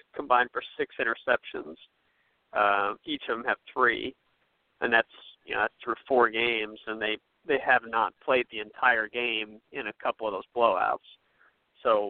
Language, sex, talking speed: English, male, 165 wpm